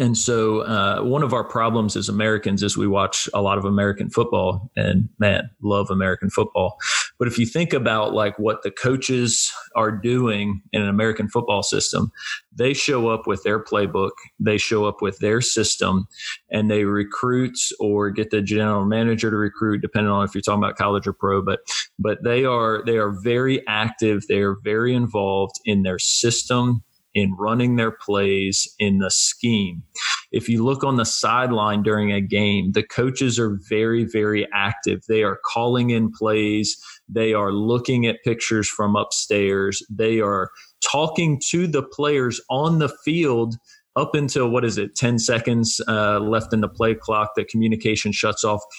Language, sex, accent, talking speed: English, male, American, 175 wpm